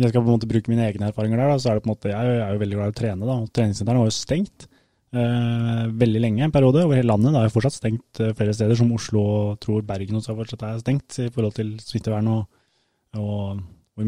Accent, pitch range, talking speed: Norwegian, 110-125 Hz, 280 wpm